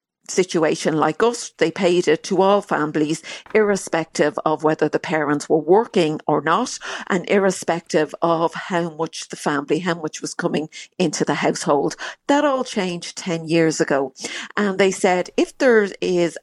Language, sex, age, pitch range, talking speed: English, female, 50-69, 155-195 Hz, 160 wpm